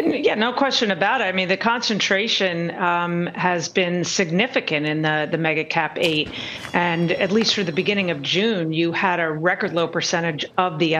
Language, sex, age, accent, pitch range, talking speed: English, female, 40-59, American, 165-195 Hz, 190 wpm